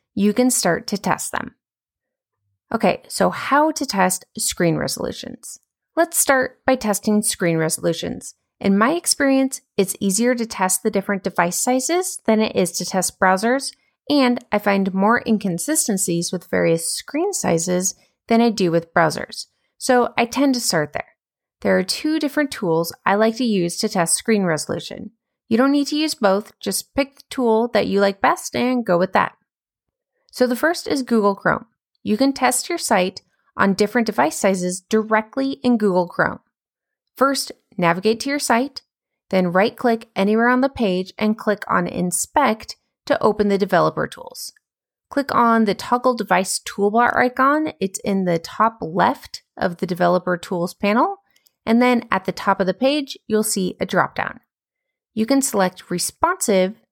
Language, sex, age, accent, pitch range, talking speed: English, female, 30-49, American, 190-265 Hz, 170 wpm